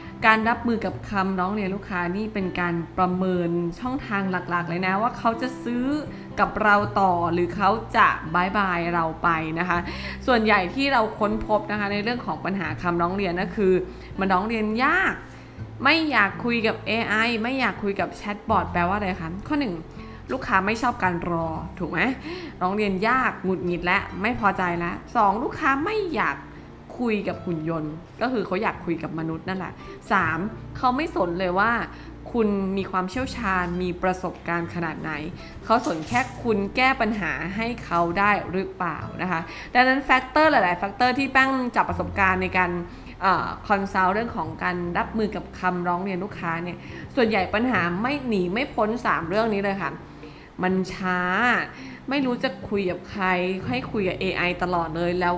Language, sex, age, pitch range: Thai, female, 20-39, 175-230 Hz